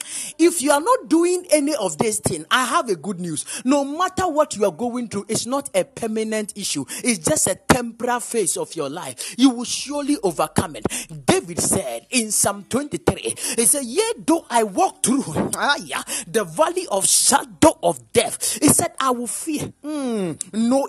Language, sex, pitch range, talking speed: English, male, 210-295 Hz, 185 wpm